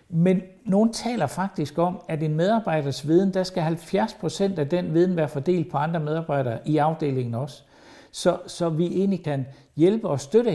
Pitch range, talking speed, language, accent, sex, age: 145-190 Hz, 175 wpm, Danish, native, male, 60-79